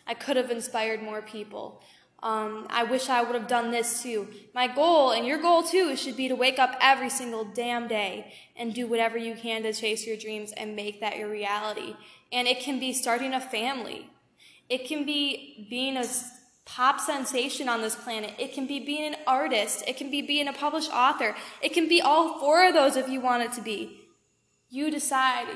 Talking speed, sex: 210 wpm, female